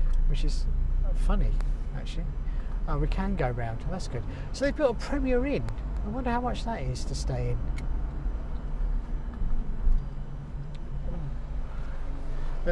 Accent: British